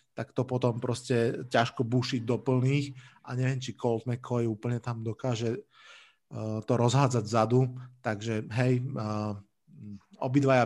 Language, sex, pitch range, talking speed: Slovak, male, 115-145 Hz, 125 wpm